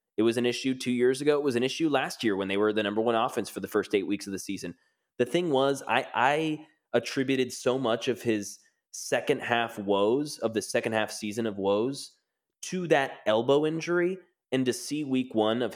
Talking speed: 220 wpm